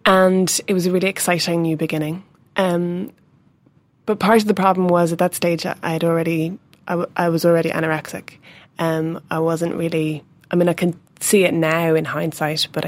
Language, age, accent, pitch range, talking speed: English, 20-39, Irish, 160-190 Hz, 190 wpm